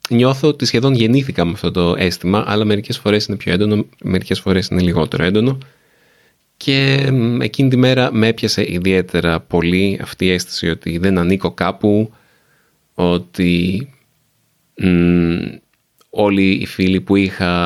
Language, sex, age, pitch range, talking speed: Greek, male, 20-39, 95-125 Hz, 135 wpm